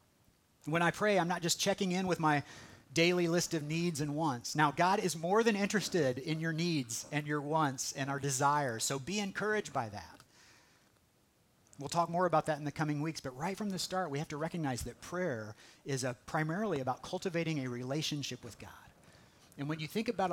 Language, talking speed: English, 205 wpm